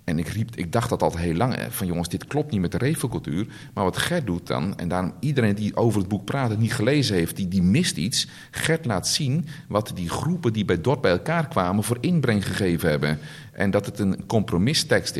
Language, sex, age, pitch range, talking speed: Dutch, male, 50-69, 95-140 Hz, 235 wpm